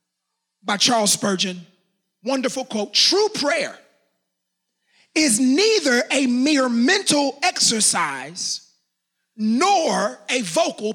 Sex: male